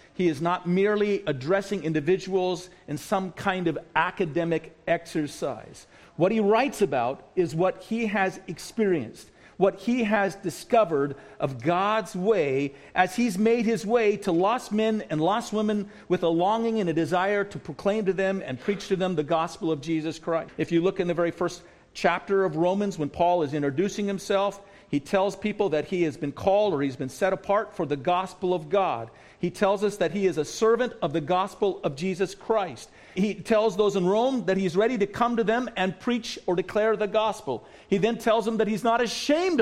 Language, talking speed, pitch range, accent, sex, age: English, 200 wpm, 180-230 Hz, American, male, 50-69